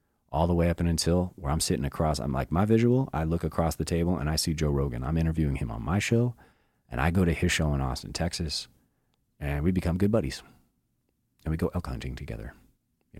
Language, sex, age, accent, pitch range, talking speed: English, male, 30-49, American, 75-100 Hz, 230 wpm